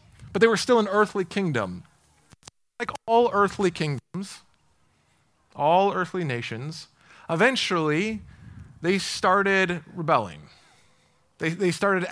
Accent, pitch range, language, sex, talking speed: American, 140-200 Hz, English, male, 105 wpm